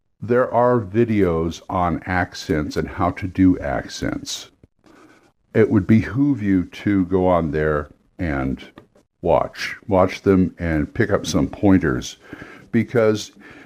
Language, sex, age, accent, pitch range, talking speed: English, male, 60-79, American, 95-130 Hz, 125 wpm